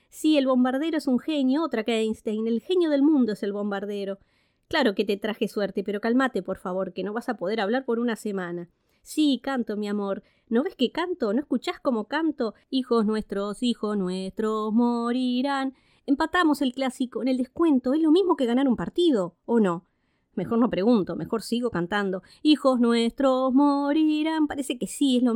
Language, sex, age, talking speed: Spanish, female, 20-39, 190 wpm